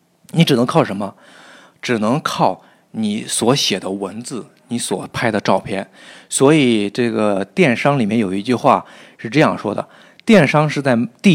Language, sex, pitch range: Chinese, male, 110-160 Hz